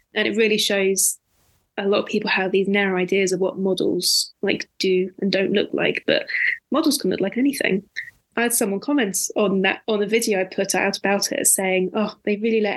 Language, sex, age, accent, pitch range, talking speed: English, female, 20-39, British, 195-235 Hz, 215 wpm